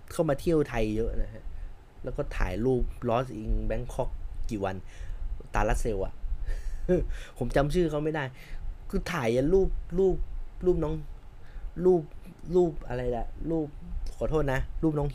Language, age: Thai, 20-39